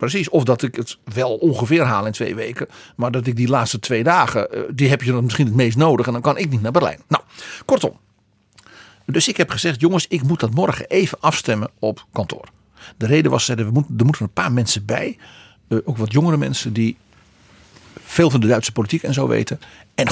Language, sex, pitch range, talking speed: Dutch, male, 110-150 Hz, 215 wpm